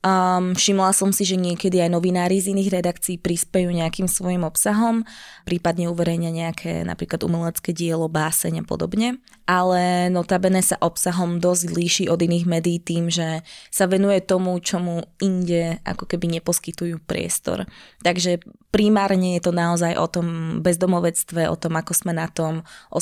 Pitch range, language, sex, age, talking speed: 170-190 Hz, Slovak, female, 20-39, 155 wpm